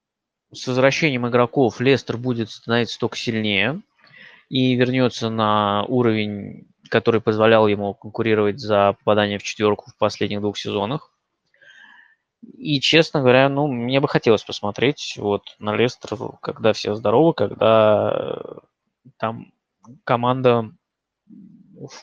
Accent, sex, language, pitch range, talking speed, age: native, male, Russian, 110-130 Hz, 115 wpm, 20-39